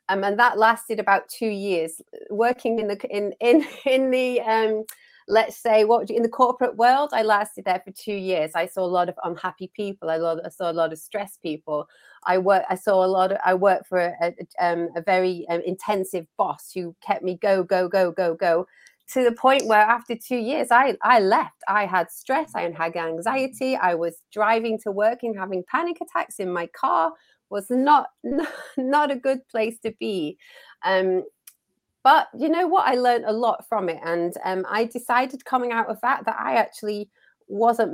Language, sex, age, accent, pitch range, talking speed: English, female, 30-49, British, 185-240 Hz, 205 wpm